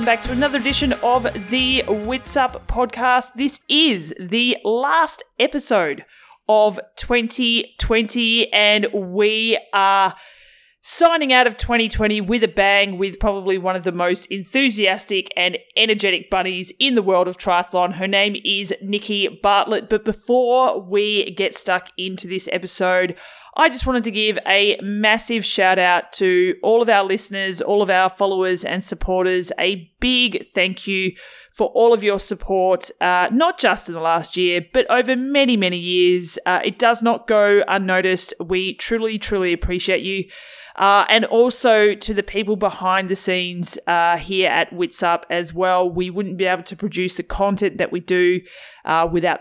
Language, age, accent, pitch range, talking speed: English, 20-39, Australian, 185-220 Hz, 165 wpm